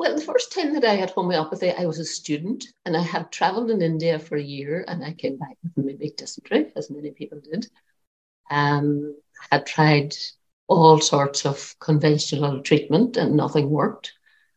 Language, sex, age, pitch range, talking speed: English, female, 60-79, 150-190 Hz, 175 wpm